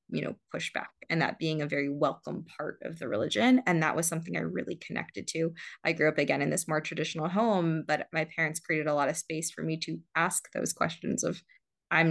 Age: 20-39